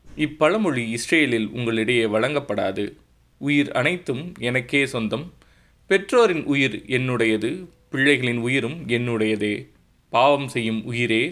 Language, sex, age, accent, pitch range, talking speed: Tamil, male, 20-39, native, 115-150 Hz, 90 wpm